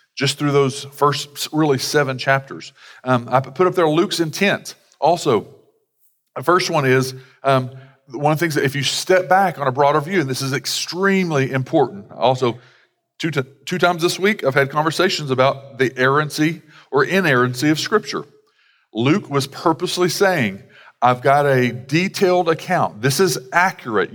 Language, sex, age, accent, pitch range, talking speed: English, male, 40-59, American, 135-180 Hz, 165 wpm